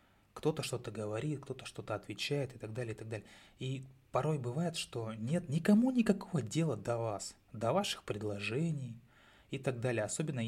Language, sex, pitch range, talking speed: Russian, male, 110-135 Hz, 165 wpm